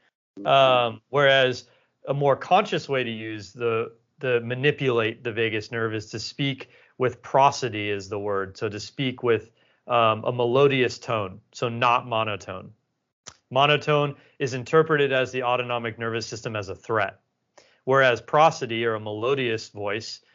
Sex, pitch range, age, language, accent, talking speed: male, 110-130 Hz, 30-49, English, American, 145 wpm